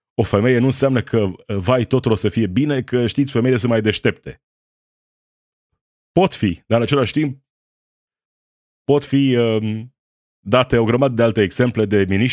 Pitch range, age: 95-125 Hz, 30-49